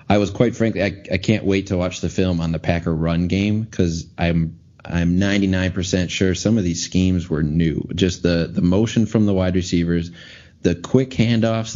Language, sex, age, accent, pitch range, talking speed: English, male, 30-49, American, 85-100 Hz, 195 wpm